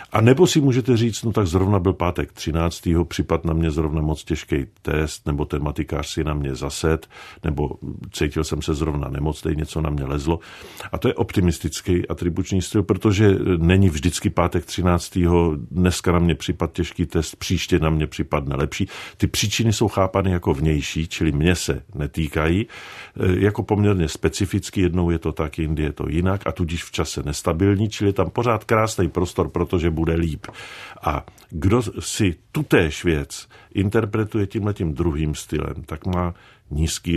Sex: male